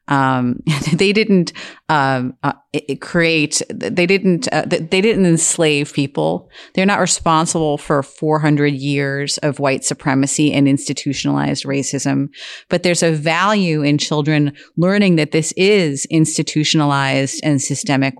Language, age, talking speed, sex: English, 30-49, 125 wpm, female